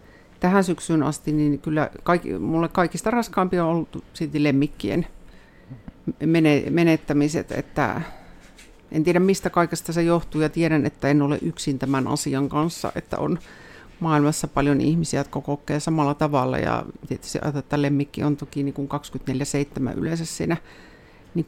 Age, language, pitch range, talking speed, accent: 50-69, Finnish, 140-165 Hz, 140 wpm, native